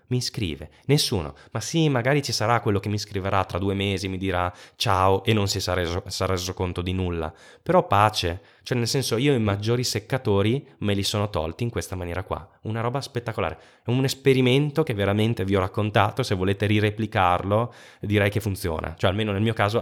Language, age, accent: Italian, 10-29, native